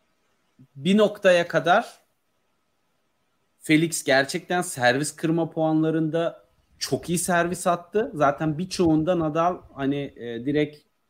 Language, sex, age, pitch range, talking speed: Turkish, male, 30-49, 130-165 Hz, 90 wpm